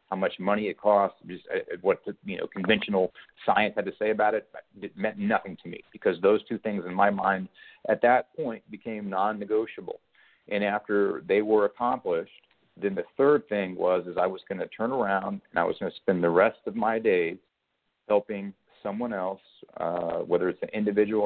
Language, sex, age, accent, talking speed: English, male, 40-59, American, 200 wpm